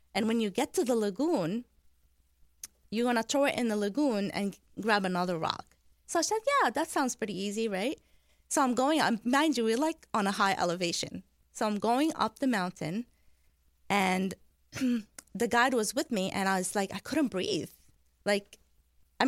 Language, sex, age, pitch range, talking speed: English, female, 20-39, 190-240 Hz, 190 wpm